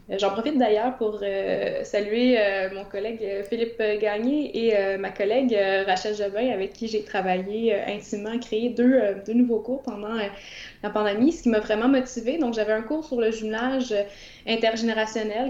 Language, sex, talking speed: French, female, 185 wpm